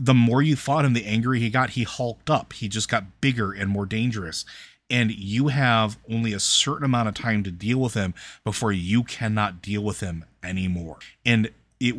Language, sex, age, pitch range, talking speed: English, male, 30-49, 100-115 Hz, 205 wpm